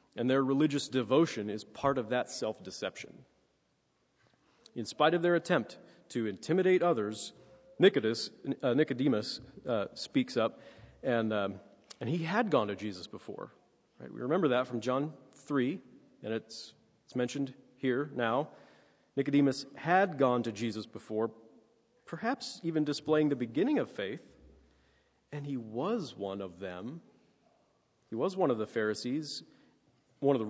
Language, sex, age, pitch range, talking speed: English, male, 40-59, 115-160 Hz, 145 wpm